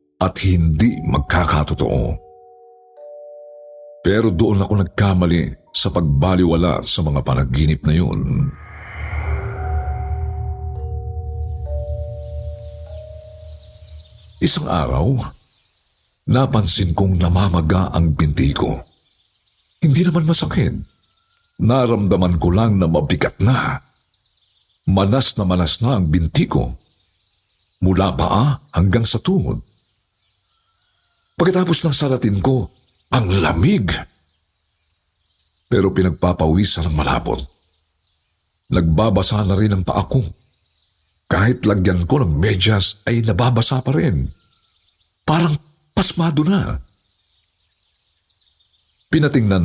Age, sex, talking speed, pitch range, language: 50-69, male, 85 wpm, 80-110 Hz, Filipino